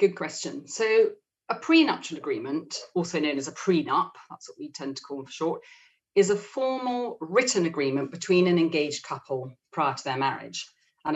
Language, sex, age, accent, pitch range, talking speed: English, female, 40-59, British, 150-205 Hz, 175 wpm